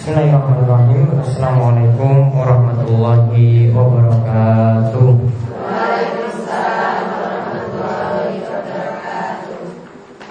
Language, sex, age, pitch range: Malay, male, 20-39, 120-130 Hz